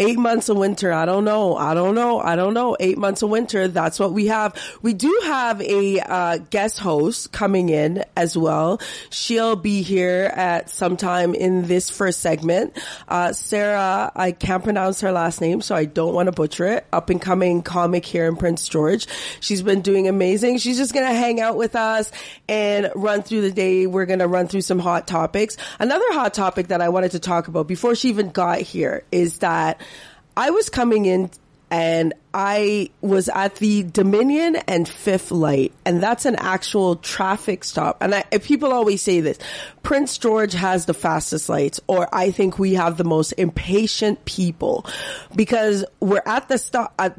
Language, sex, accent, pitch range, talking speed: English, female, American, 175-215 Hz, 195 wpm